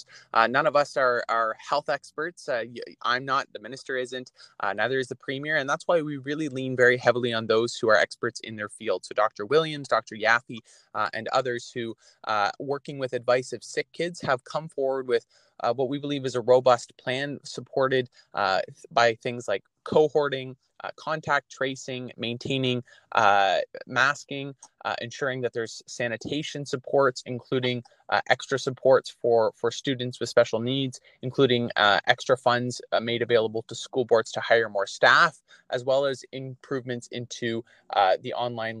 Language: English